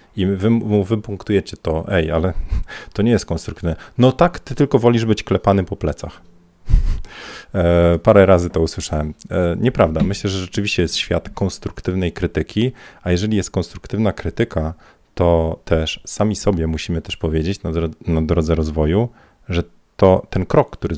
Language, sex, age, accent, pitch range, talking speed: Polish, male, 40-59, native, 85-110 Hz, 155 wpm